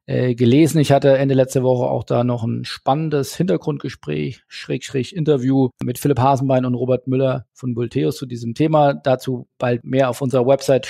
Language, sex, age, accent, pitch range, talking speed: German, male, 40-59, German, 125-150 Hz, 170 wpm